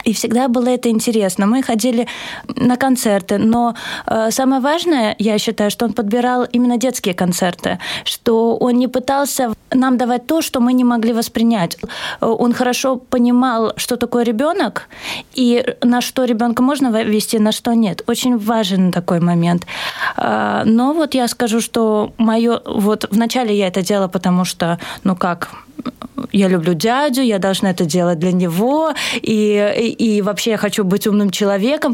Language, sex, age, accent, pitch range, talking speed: Russian, female, 20-39, native, 215-255 Hz, 155 wpm